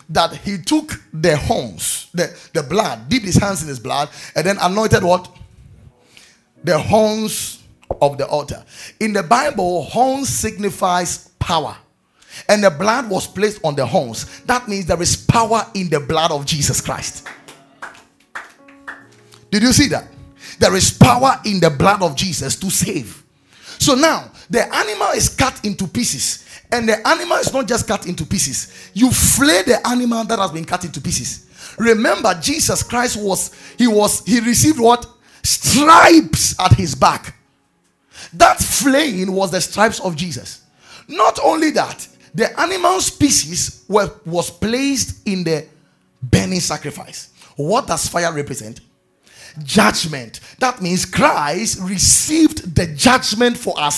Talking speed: 150 wpm